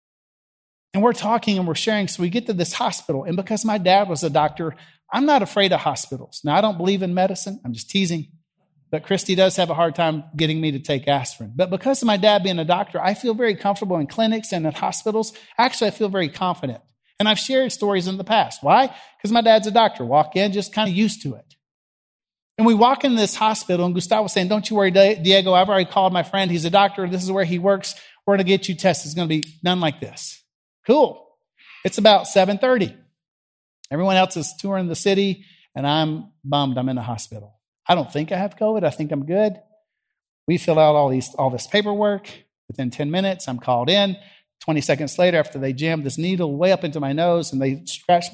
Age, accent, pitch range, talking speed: 40-59, American, 150-200 Hz, 230 wpm